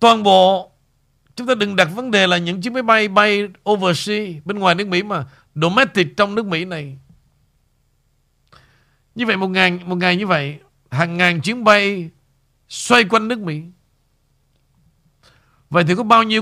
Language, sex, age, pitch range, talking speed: Vietnamese, male, 60-79, 140-210 Hz, 170 wpm